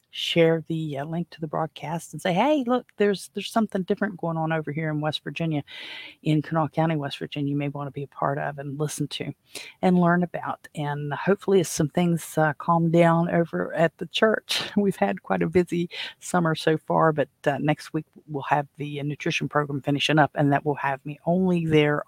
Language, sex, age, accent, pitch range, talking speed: English, female, 50-69, American, 145-165 Hz, 215 wpm